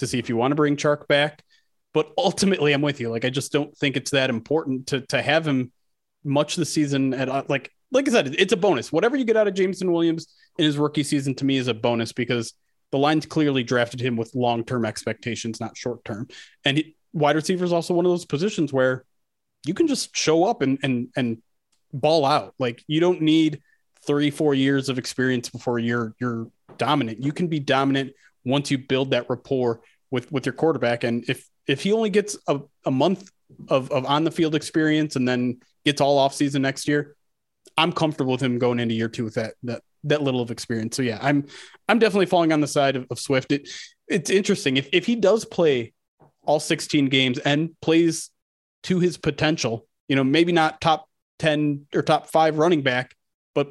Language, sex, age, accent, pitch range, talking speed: English, male, 30-49, American, 130-160 Hz, 210 wpm